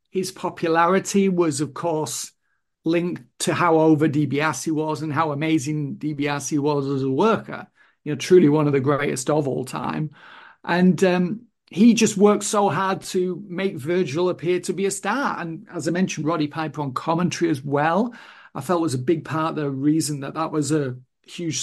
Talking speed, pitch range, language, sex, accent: 190 wpm, 155-200 Hz, English, male, British